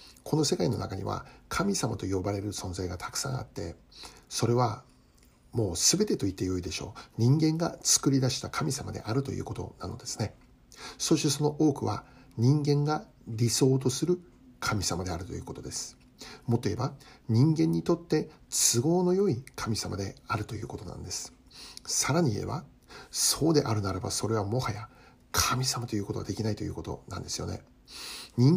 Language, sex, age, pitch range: Japanese, male, 60-79, 105-140 Hz